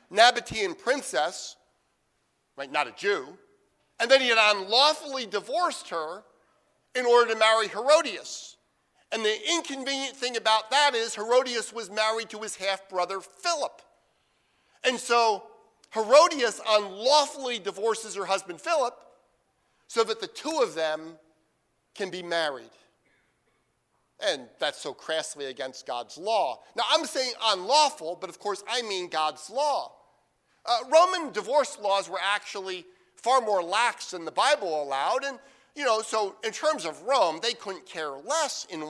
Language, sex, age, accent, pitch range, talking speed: English, male, 50-69, American, 180-270 Hz, 145 wpm